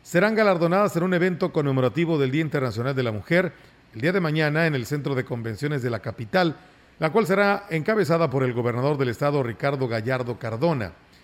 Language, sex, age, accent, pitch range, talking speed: Spanish, male, 40-59, Mexican, 130-175 Hz, 190 wpm